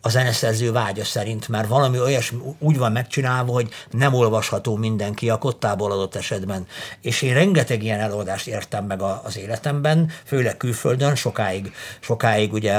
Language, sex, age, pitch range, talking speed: Hungarian, male, 60-79, 105-140 Hz, 150 wpm